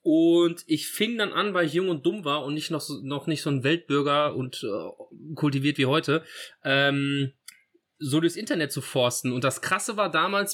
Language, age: German, 30-49